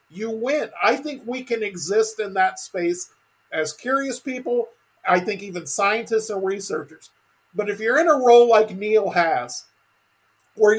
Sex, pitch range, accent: male, 195-260 Hz, American